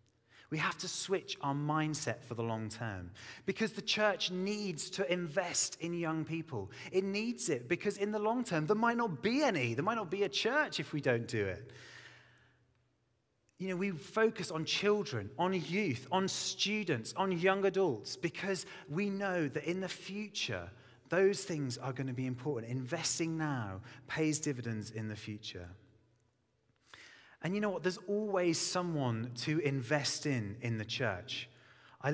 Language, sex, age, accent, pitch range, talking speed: English, male, 30-49, British, 130-190 Hz, 170 wpm